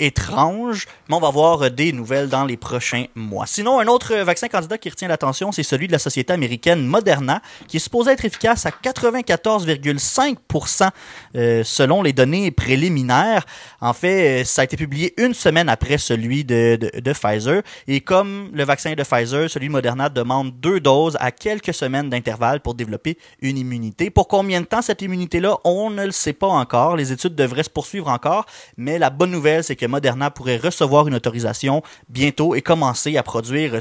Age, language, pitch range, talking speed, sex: 30-49, French, 130-180 Hz, 185 wpm, male